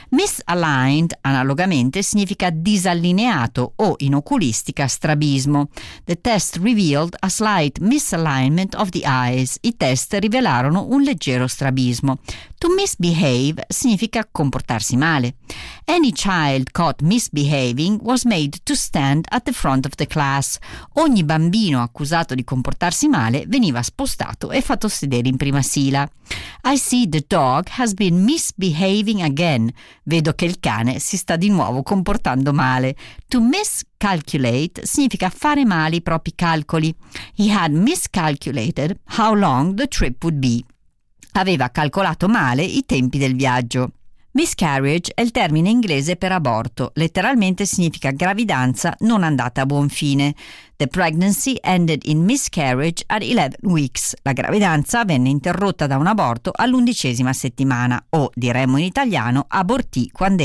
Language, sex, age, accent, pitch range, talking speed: Italian, female, 40-59, native, 135-210 Hz, 135 wpm